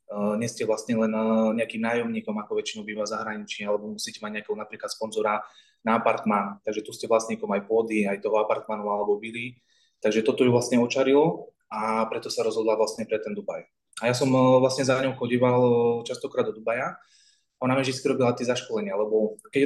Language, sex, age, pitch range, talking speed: Slovak, male, 20-39, 110-135 Hz, 185 wpm